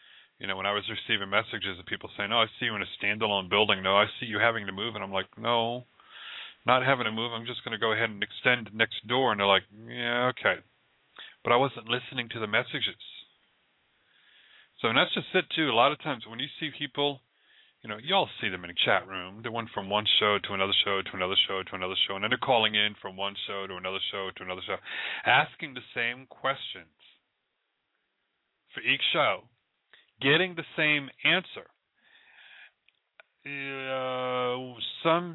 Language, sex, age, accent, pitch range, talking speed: English, male, 30-49, American, 105-135 Hz, 200 wpm